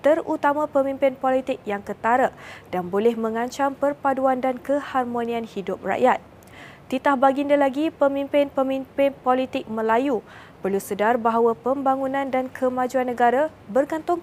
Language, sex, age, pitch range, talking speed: Malay, female, 20-39, 235-275 Hz, 115 wpm